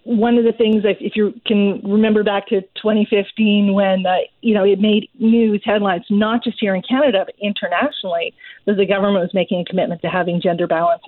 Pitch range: 185-230 Hz